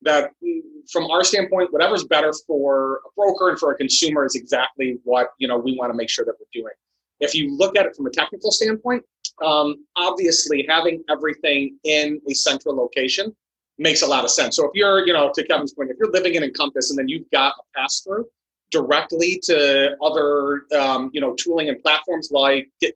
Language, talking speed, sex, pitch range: English, 205 wpm, male, 140-225 Hz